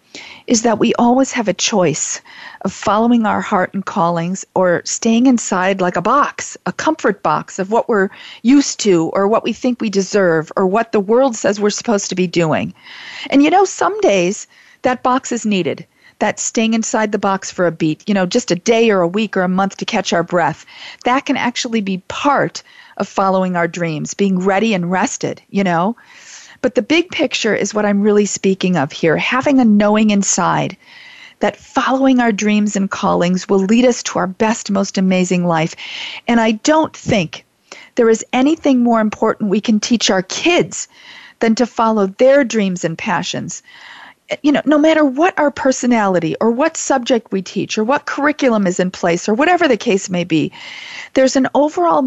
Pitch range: 195-260 Hz